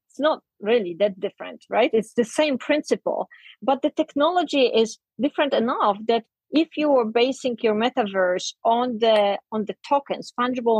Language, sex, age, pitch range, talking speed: English, female, 30-49, 200-255 Hz, 160 wpm